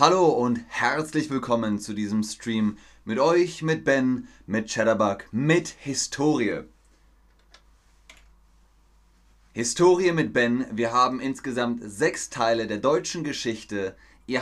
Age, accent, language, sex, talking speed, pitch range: 30-49, German, German, male, 110 wpm, 105-140 Hz